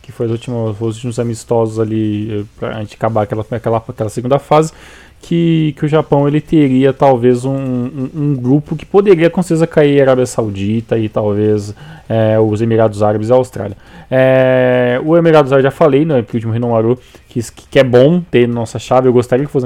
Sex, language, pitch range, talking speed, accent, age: male, Portuguese, 115-145 Hz, 200 wpm, Brazilian, 20-39